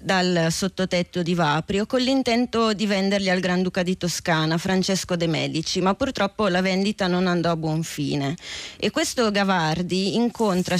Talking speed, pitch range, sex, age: 155 wpm, 180-215 Hz, female, 20-39